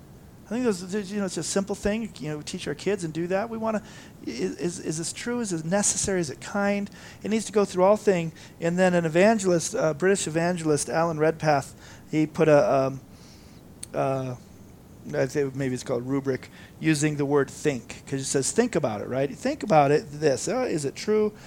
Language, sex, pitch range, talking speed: English, male, 135-185 Hz, 220 wpm